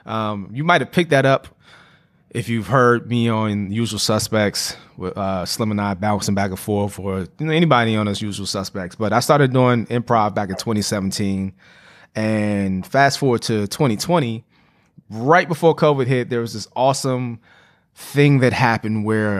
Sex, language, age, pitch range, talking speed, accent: male, English, 20-39, 100-135 Hz, 160 wpm, American